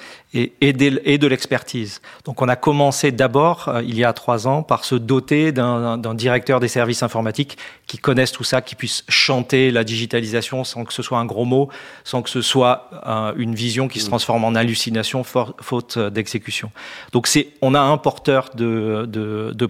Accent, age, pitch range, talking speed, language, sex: French, 40-59, 115-140 Hz, 190 wpm, French, male